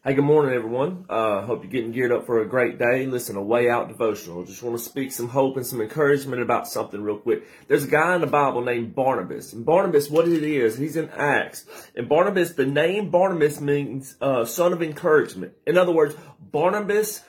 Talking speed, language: 220 wpm, English